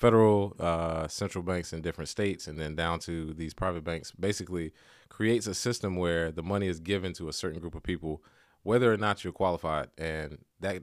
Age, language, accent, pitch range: 20-39, English, American, 85-100 Hz